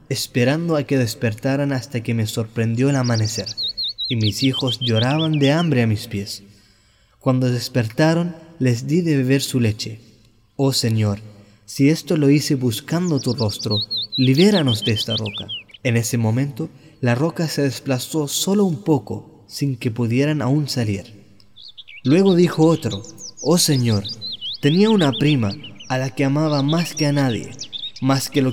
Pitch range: 110-150 Hz